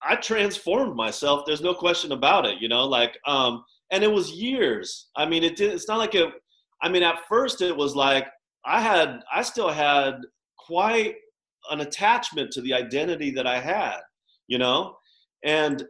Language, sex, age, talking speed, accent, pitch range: English, male, 30-49, 180 wpm, American, 125-185 Hz